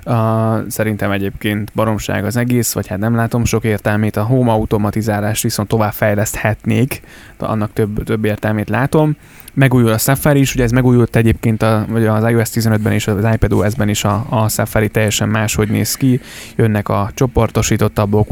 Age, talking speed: 20-39, 165 wpm